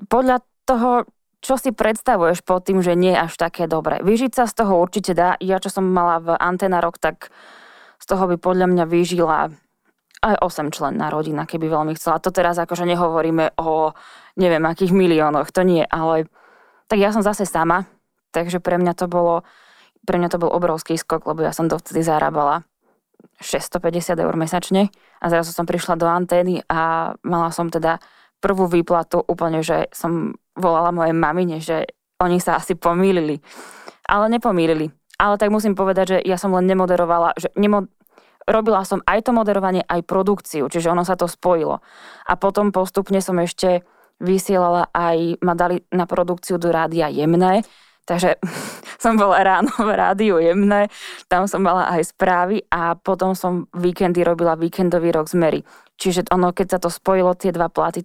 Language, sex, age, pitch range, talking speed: Slovak, female, 20-39, 170-190 Hz, 175 wpm